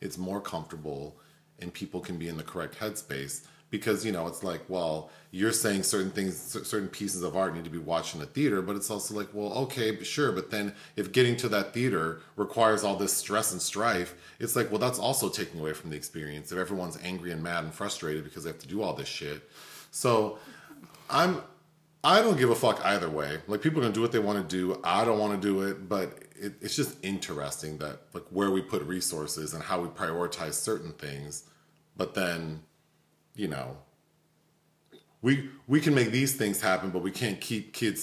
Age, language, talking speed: 40-59, English, 215 wpm